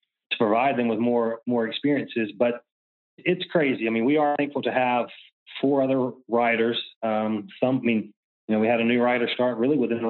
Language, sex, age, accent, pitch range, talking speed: English, male, 30-49, American, 115-130 Hz, 210 wpm